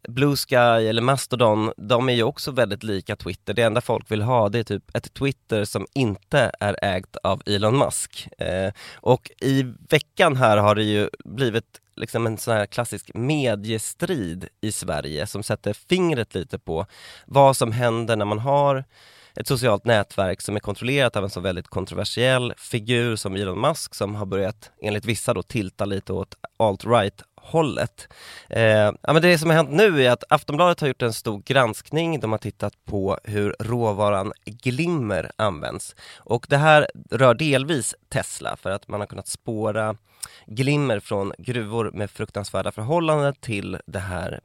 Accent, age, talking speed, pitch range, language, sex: native, 20-39, 170 wpm, 105-135 Hz, Swedish, male